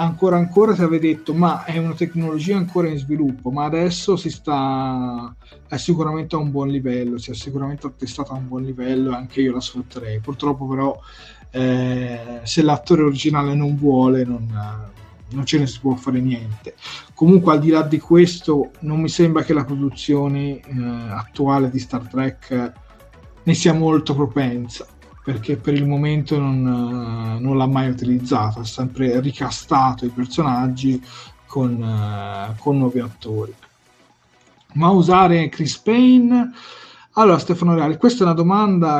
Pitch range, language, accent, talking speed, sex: 125-160 Hz, Italian, native, 155 wpm, male